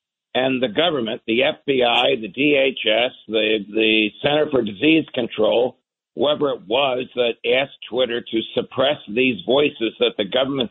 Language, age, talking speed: English, 60-79, 145 wpm